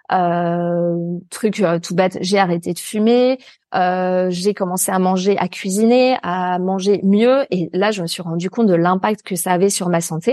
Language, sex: French, female